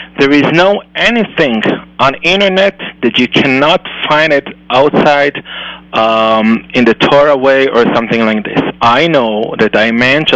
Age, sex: 30-49, male